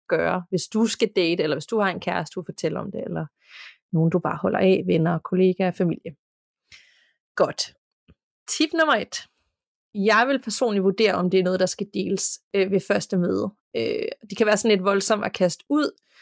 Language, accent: Danish, native